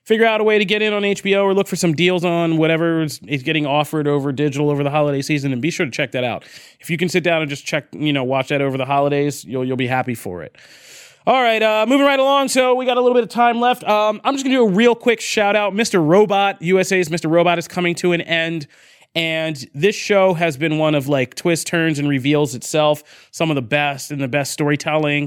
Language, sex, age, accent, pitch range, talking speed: English, male, 30-49, American, 140-175 Hz, 260 wpm